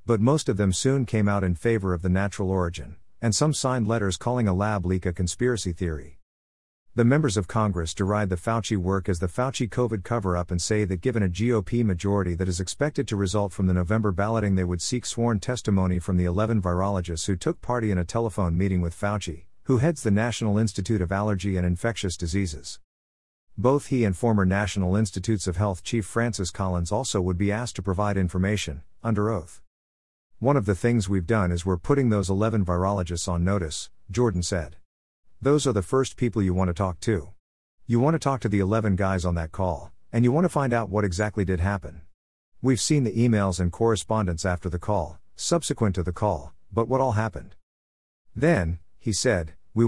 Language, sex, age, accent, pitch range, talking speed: English, male, 50-69, American, 90-115 Hz, 205 wpm